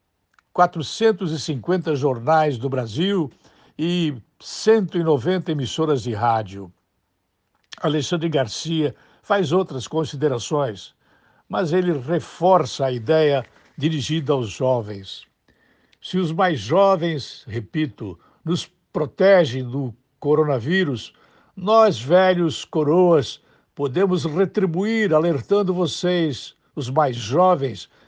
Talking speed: 90 wpm